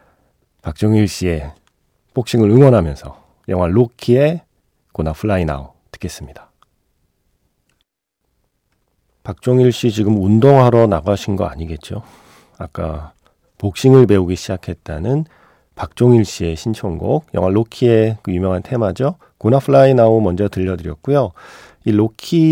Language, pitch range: Korean, 85-130 Hz